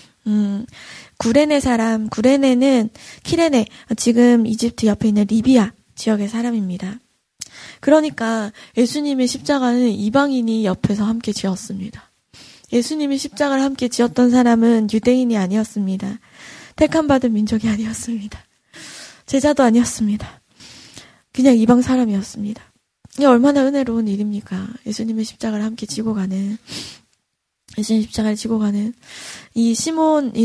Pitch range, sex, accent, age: 215-255 Hz, female, native, 20-39